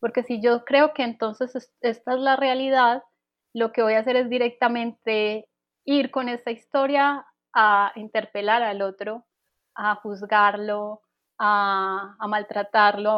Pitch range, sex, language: 210-240 Hz, female, Spanish